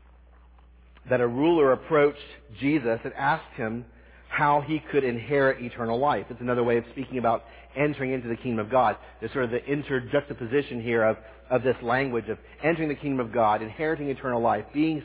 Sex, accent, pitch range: male, American, 120-150 Hz